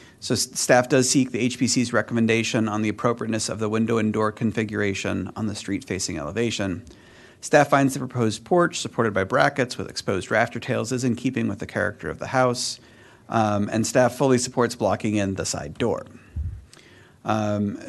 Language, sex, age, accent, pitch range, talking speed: English, male, 40-59, American, 105-125 Hz, 180 wpm